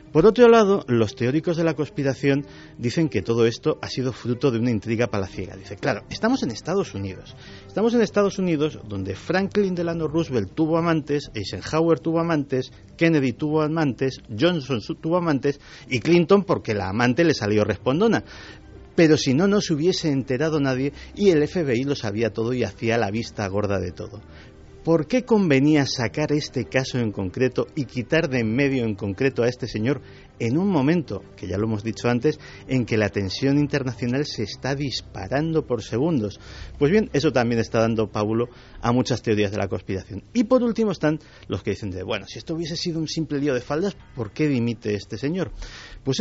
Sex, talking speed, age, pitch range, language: male, 190 wpm, 40-59, 110-155 Hz, Spanish